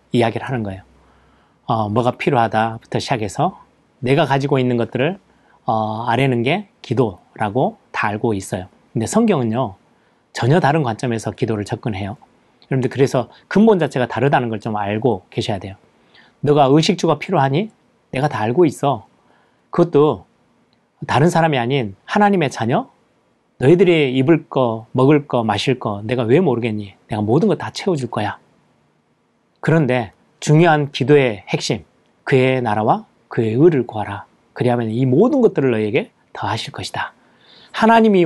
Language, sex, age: Korean, male, 30-49